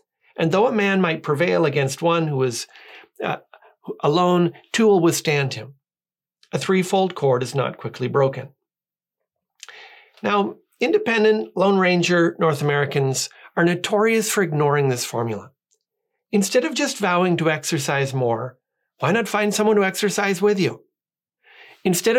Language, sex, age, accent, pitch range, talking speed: English, male, 40-59, American, 145-205 Hz, 140 wpm